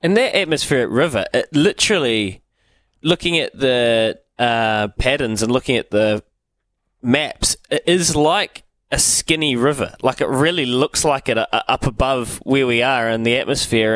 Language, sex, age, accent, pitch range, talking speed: English, male, 20-39, Australian, 105-135 Hz, 160 wpm